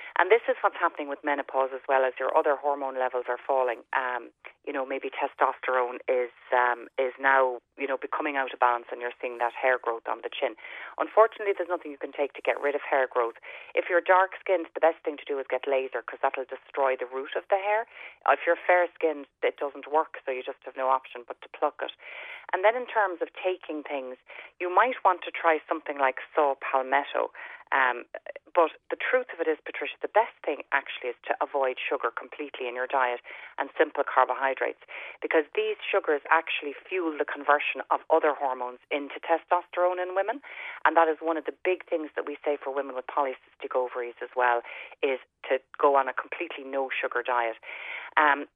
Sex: female